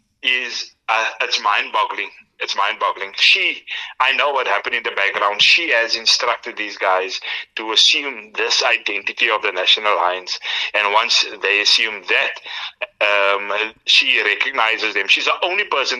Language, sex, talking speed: English, male, 150 wpm